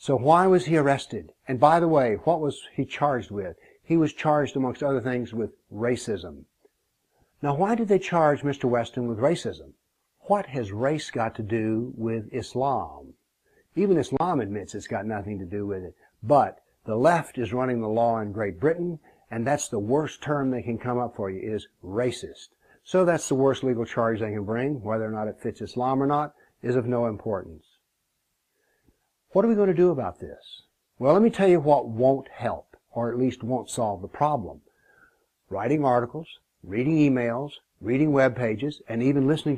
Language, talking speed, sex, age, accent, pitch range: English, 190 wpm, male, 60-79, American, 115-150 Hz